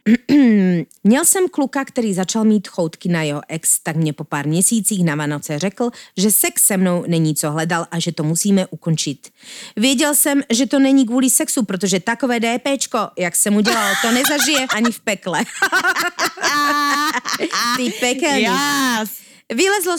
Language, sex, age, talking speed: Slovak, female, 30-49, 155 wpm